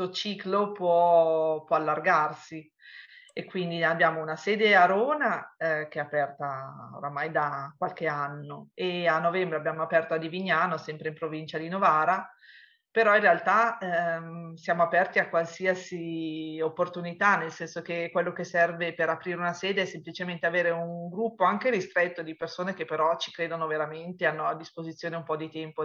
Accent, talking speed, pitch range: native, 165 wpm, 155-180 Hz